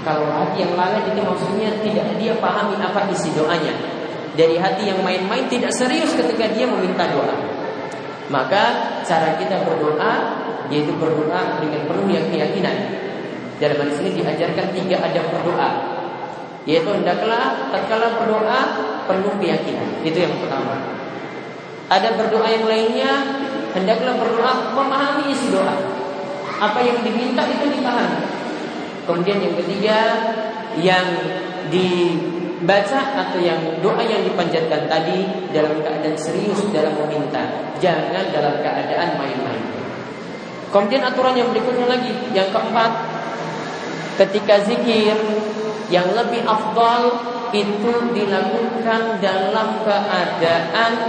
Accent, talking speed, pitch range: native, 115 wpm, 170-230 Hz